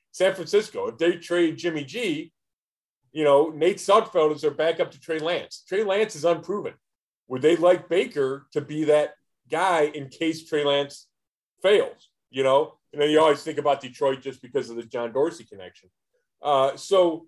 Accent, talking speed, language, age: American, 180 wpm, English, 40-59